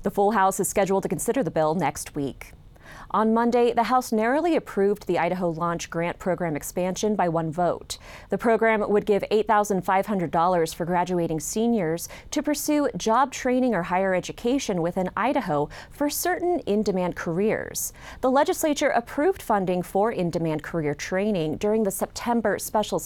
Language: English